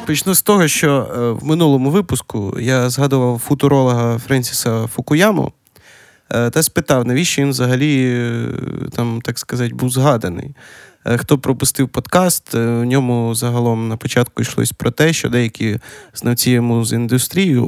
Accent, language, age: native, Ukrainian, 20-39